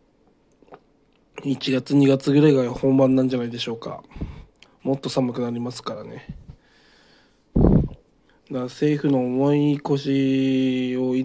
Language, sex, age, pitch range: Japanese, male, 20-39, 125-145 Hz